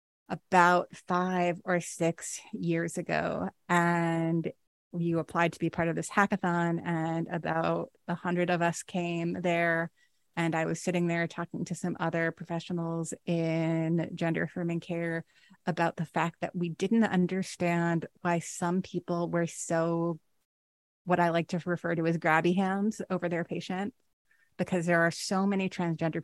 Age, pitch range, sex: 30-49, 170-185 Hz, female